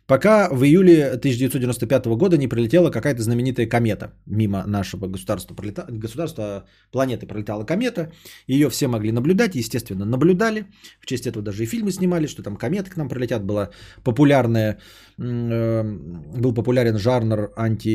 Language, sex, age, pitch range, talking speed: Bulgarian, male, 20-39, 100-165 Hz, 130 wpm